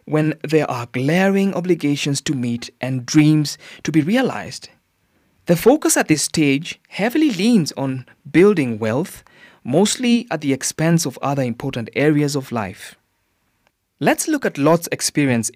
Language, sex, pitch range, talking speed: English, male, 120-170 Hz, 145 wpm